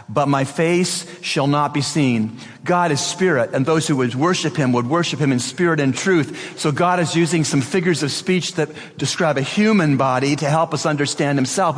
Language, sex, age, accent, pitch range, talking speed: English, male, 40-59, American, 120-170 Hz, 210 wpm